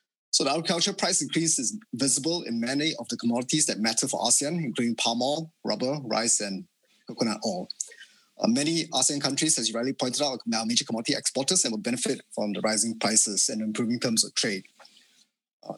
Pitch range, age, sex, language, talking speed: 115-150 Hz, 20-39, male, English, 190 wpm